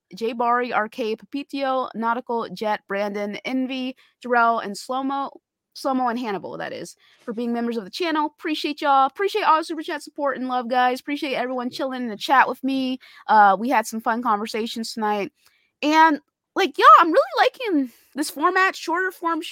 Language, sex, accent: English, female, American